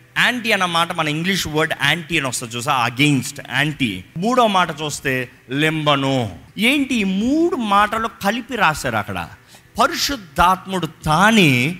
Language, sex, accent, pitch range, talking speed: Telugu, male, native, 140-200 Hz, 120 wpm